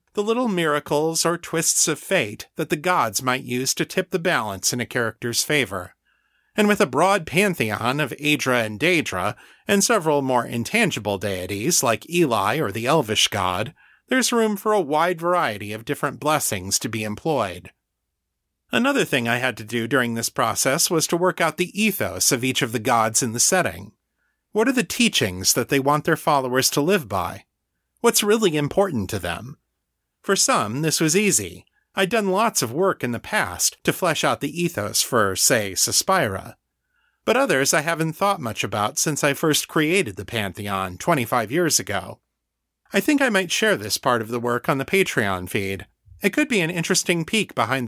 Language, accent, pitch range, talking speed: English, American, 115-190 Hz, 190 wpm